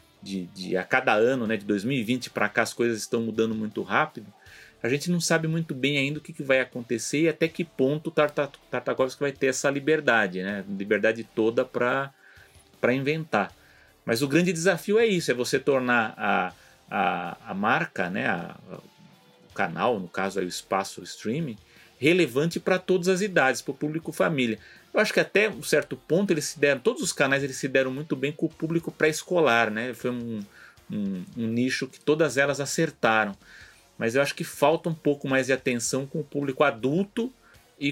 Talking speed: 185 wpm